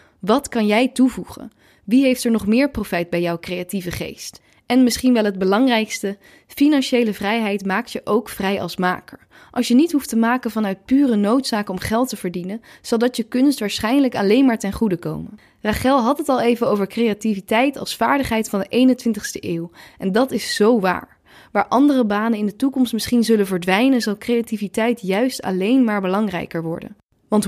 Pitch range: 205-250 Hz